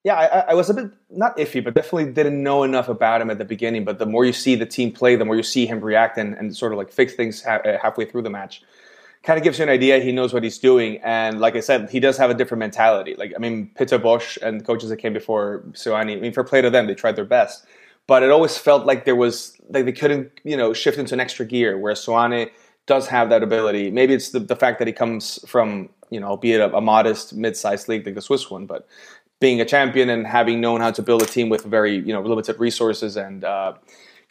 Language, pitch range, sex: English, 110-130 Hz, male